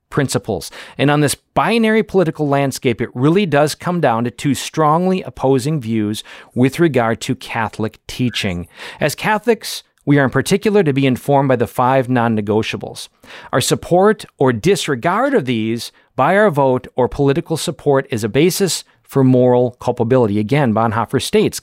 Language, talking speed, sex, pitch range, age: English, 155 wpm, male, 125-180 Hz, 40-59